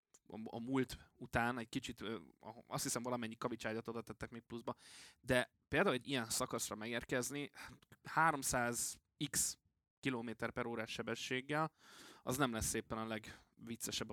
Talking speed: 125 wpm